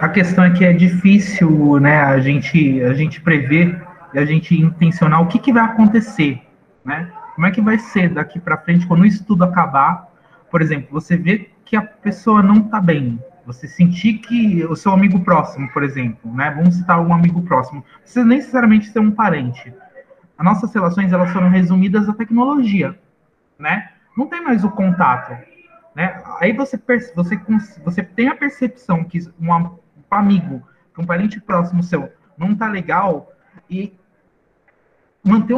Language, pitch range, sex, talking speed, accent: Portuguese, 160-205 Hz, male, 165 wpm, Brazilian